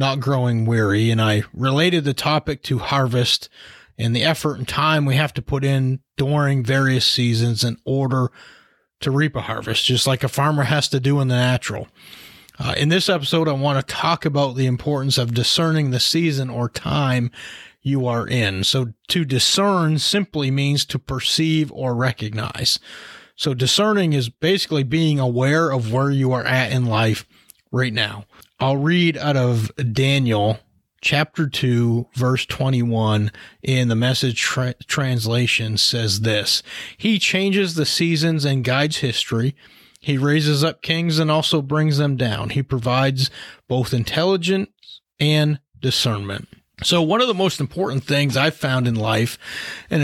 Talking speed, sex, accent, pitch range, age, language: 160 wpm, male, American, 120-150 Hz, 30-49, English